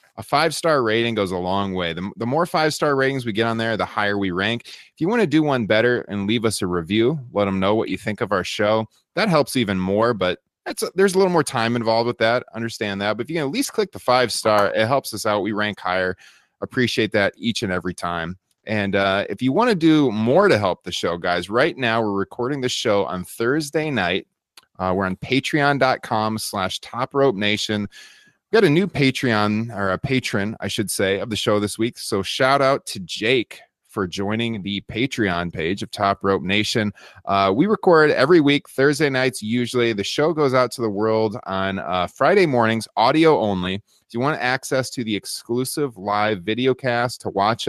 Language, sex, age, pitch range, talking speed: English, male, 30-49, 100-130 Hz, 215 wpm